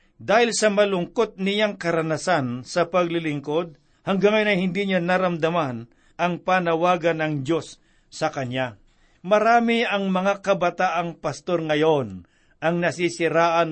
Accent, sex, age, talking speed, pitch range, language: native, male, 50-69, 120 wpm, 155-185 Hz, Filipino